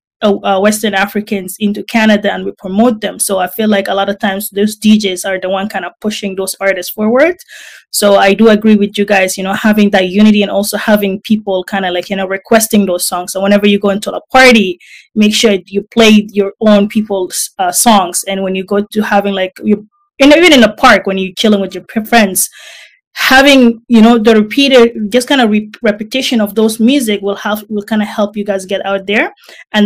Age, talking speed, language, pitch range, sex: 20-39, 225 wpm, English, 195-225 Hz, female